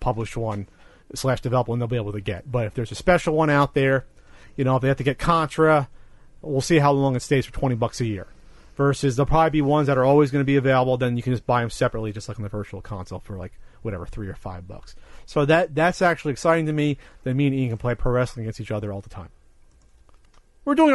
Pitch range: 110-150 Hz